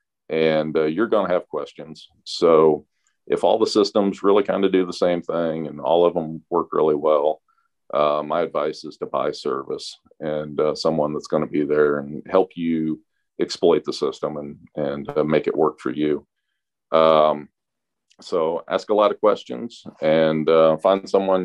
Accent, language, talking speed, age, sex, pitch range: American, English, 185 wpm, 40-59, male, 80-115 Hz